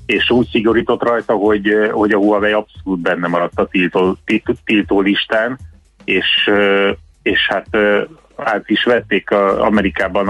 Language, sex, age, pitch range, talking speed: Hungarian, male, 30-49, 95-105 Hz, 130 wpm